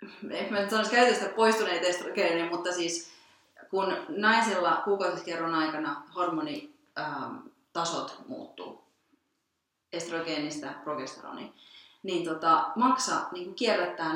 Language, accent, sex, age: Finnish, native, female, 30-49